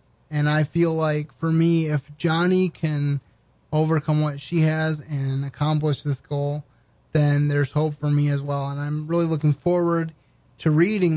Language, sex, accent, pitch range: English, male, American, 140-160 Hz